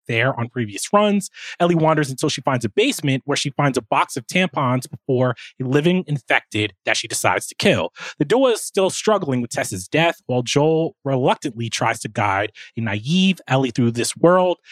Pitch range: 125-170 Hz